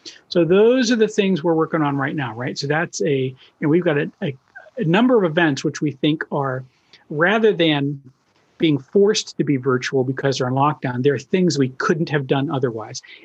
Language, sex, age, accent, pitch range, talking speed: English, male, 50-69, American, 145-195 Hz, 220 wpm